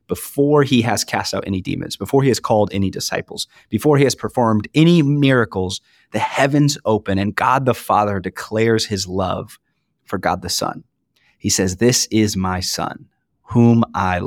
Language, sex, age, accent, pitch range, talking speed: English, male, 30-49, American, 95-110 Hz, 175 wpm